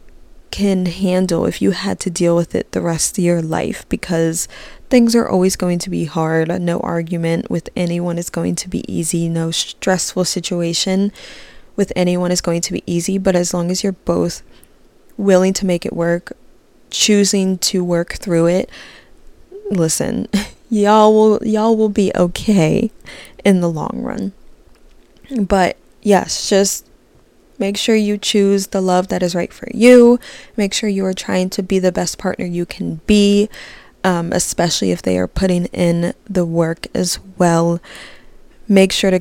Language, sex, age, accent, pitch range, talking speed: English, female, 20-39, American, 175-210 Hz, 165 wpm